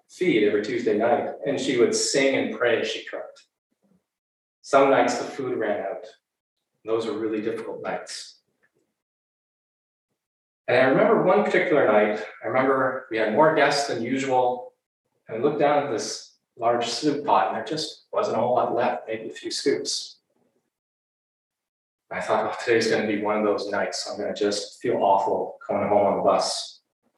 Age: 30-49